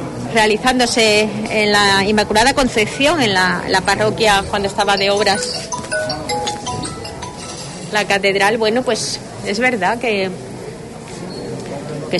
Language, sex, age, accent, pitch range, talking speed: Spanish, female, 30-49, Spanish, 195-230 Hz, 105 wpm